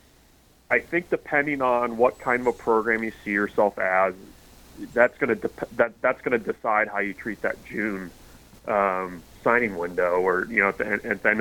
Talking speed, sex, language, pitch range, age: 205 wpm, male, English, 100-120 Hz, 30-49